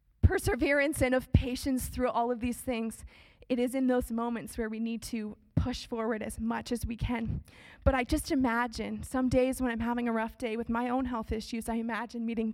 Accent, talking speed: American, 215 wpm